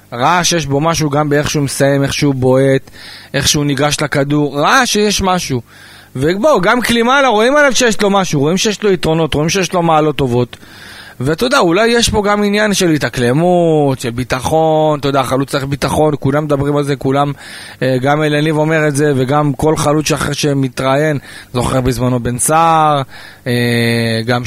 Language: Hebrew